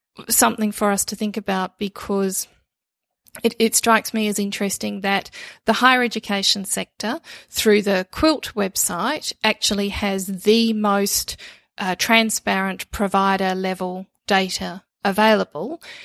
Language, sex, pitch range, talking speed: English, female, 190-225 Hz, 120 wpm